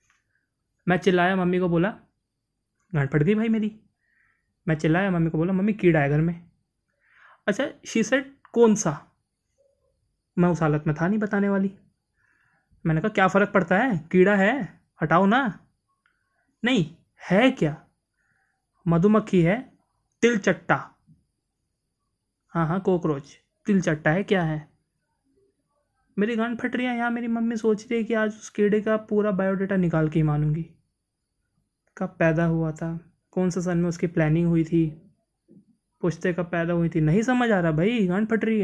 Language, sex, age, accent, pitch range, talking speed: Hindi, male, 20-39, native, 165-215 Hz, 155 wpm